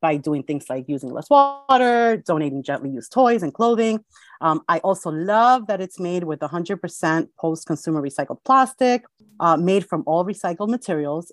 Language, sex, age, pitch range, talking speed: English, female, 30-49, 150-200 Hz, 165 wpm